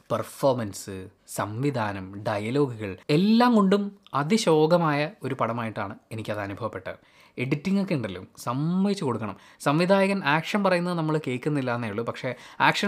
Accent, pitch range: native, 120-185 Hz